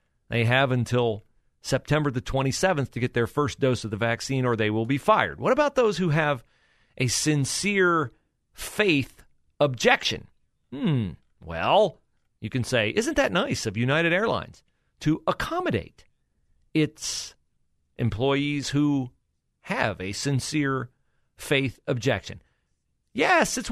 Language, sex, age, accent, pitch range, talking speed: English, male, 40-59, American, 115-155 Hz, 130 wpm